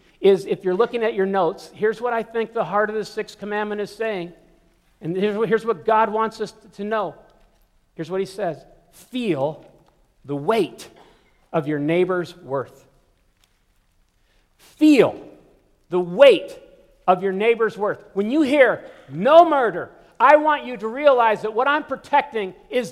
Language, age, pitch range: English, 50-69, 185-245 Hz